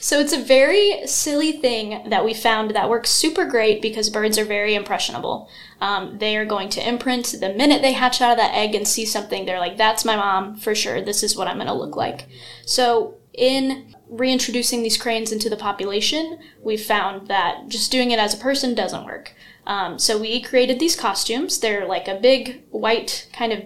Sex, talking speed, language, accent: female, 210 wpm, English, American